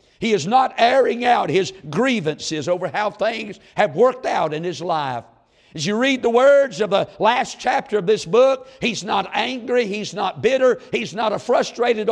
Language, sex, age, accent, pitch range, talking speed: English, male, 60-79, American, 180-245 Hz, 190 wpm